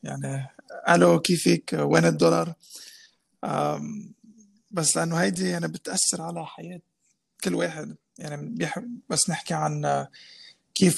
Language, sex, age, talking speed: Arabic, male, 20-39, 115 wpm